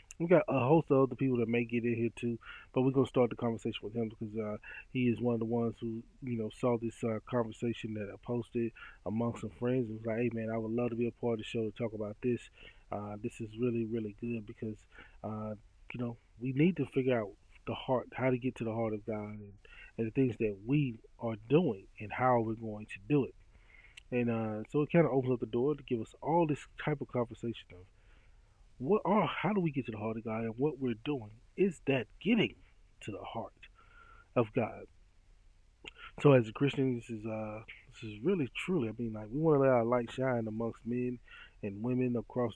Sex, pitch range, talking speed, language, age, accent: male, 110-130 Hz, 240 wpm, English, 20-39, American